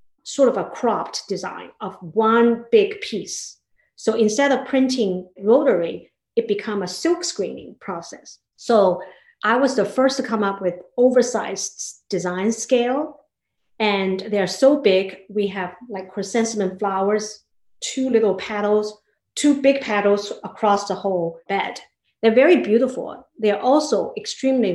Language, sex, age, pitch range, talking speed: English, female, 50-69, 195-250 Hz, 140 wpm